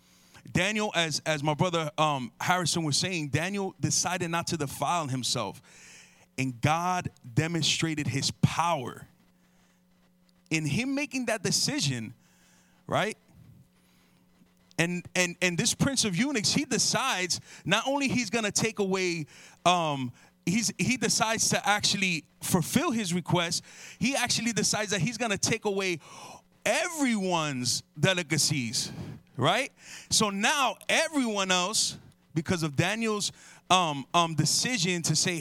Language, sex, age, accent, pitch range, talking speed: English, male, 30-49, American, 150-200 Hz, 125 wpm